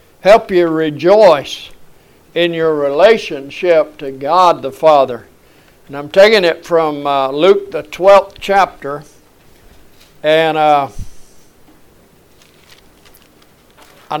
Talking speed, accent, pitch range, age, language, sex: 95 wpm, American, 145-195 Hz, 60-79, English, male